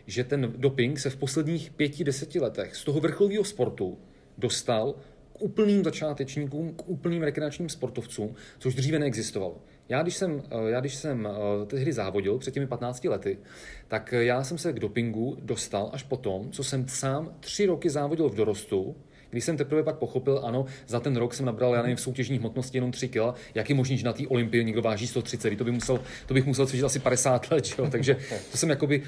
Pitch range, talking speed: 120-145 Hz, 195 wpm